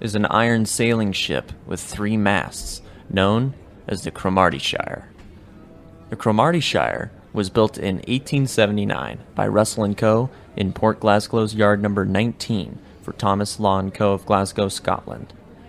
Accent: American